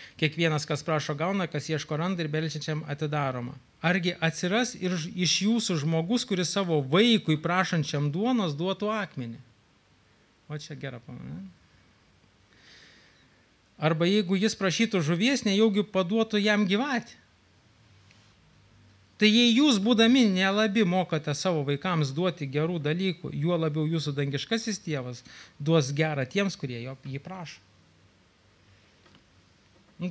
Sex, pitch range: male, 140-205 Hz